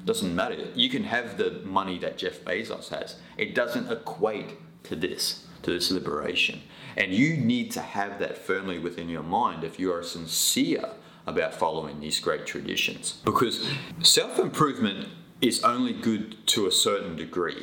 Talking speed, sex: 160 wpm, male